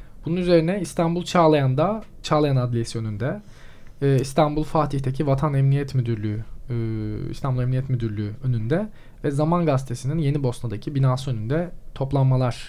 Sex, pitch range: male, 125-150 Hz